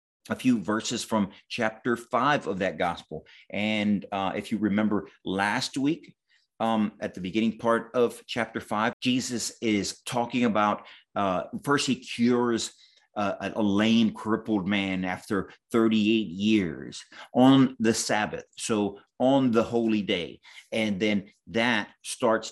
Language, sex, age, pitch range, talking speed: English, male, 30-49, 100-115 Hz, 140 wpm